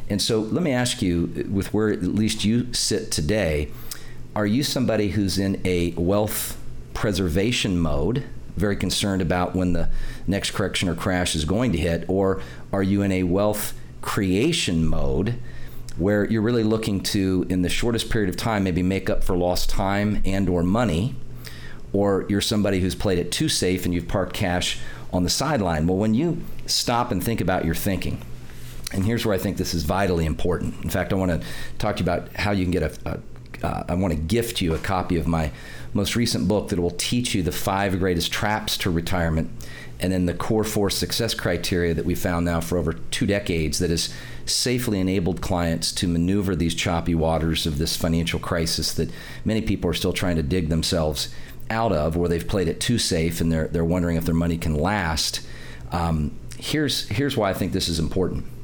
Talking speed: 200 wpm